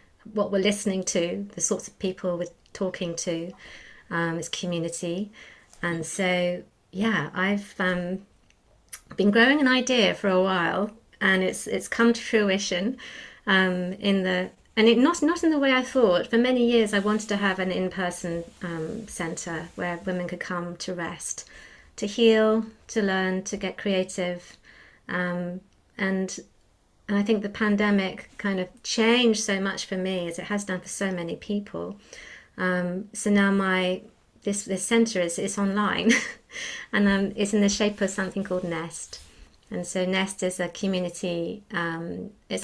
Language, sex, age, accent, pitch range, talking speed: English, female, 30-49, British, 175-210 Hz, 165 wpm